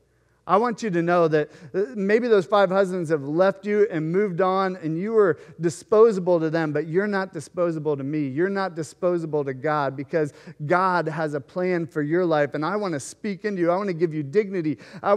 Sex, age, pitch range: male, 40-59, 145-210 Hz